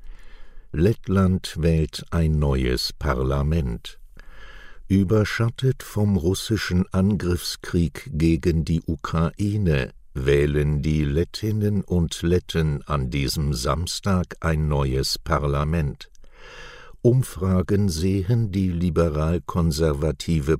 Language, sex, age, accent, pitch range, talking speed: German, male, 60-79, German, 75-95 Hz, 80 wpm